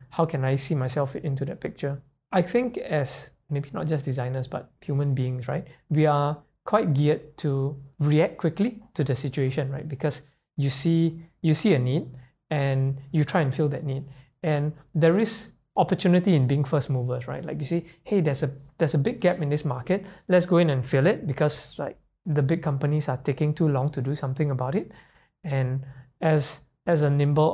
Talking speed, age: 200 wpm, 20-39